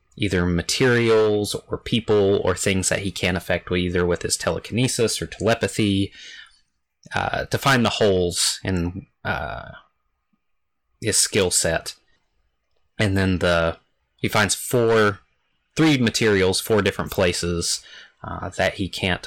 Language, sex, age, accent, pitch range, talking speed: English, male, 30-49, American, 85-105 Hz, 130 wpm